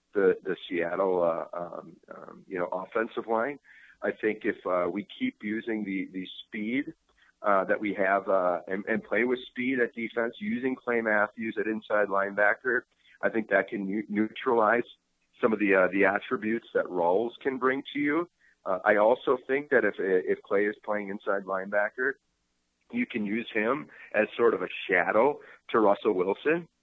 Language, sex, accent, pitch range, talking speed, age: English, male, American, 105-135 Hz, 175 wpm, 40-59